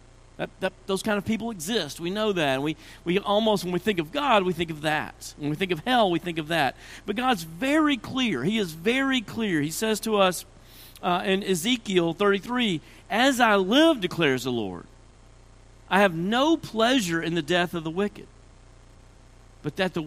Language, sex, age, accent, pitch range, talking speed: English, male, 50-69, American, 125-200 Hz, 190 wpm